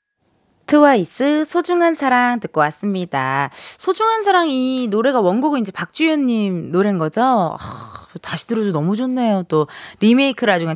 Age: 20-39